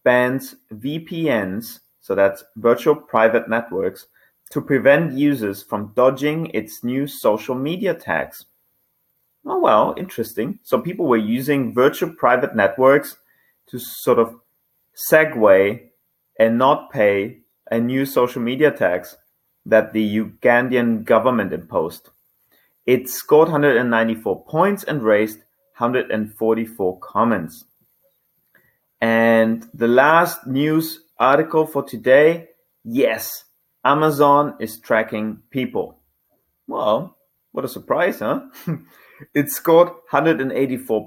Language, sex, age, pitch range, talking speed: English, male, 30-49, 110-145 Hz, 105 wpm